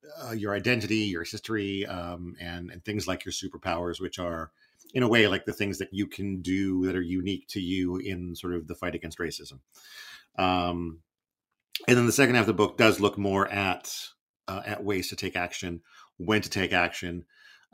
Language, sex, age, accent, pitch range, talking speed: English, male, 50-69, American, 90-105 Hz, 200 wpm